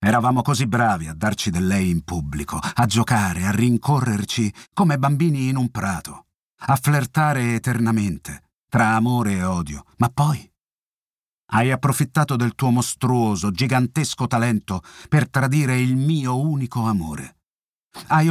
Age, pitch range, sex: 50-69, 105-145 Hz, male